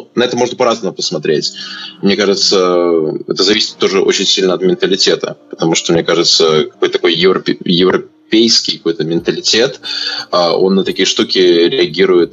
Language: Russian